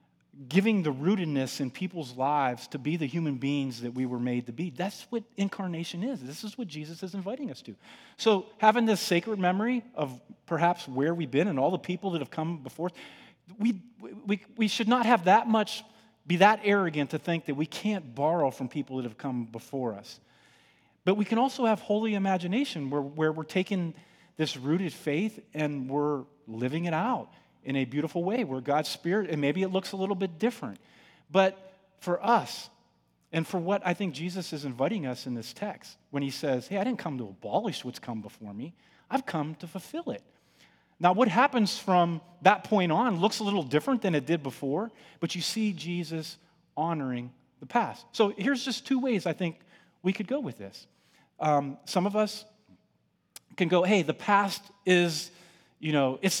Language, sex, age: English, male, 40-59